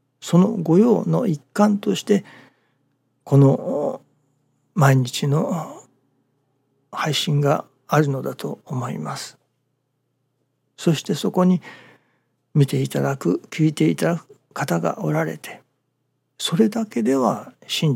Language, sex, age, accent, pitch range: Japanese, male, 60-79, native, 135-165 Hz